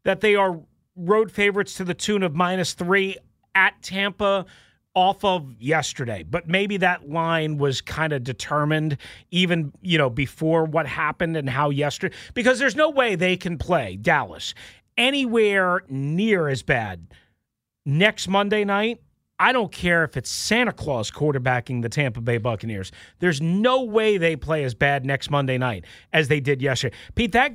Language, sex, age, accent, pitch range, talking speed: English, male, 40-59, American, 150-215 Hz, 165 wpm